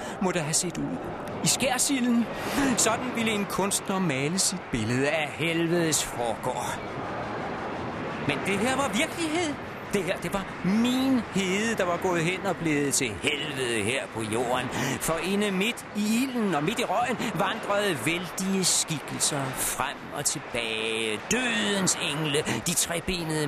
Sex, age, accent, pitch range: male, 40-59, native, 140-215 Hz